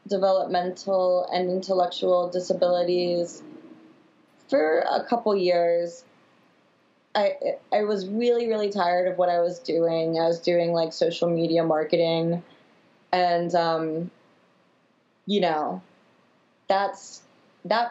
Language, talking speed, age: English, 105 wpm, 20-39